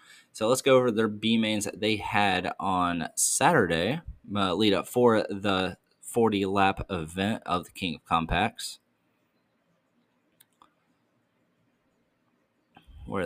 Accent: American